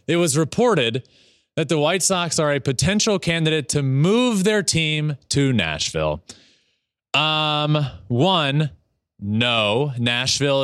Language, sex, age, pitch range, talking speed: English, male, 20-39, 125-180 Hz, 120 wpm